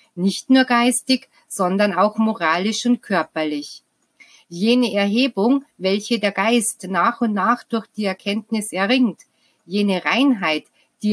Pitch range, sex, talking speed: 195-240 Hz, female, 125 wpm